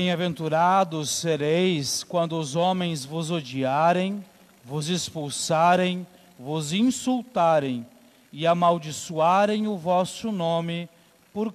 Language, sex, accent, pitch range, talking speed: Portuguese, male, Brazilian, 175-235 Hz, 90 wpm